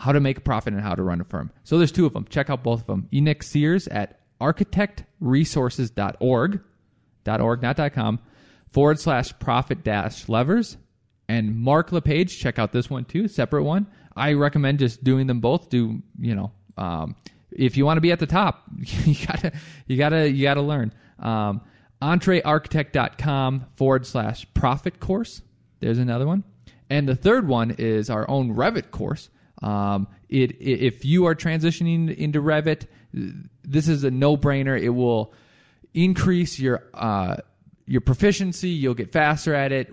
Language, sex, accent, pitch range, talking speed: English, male, American, 120-150 Hz, 165 wpm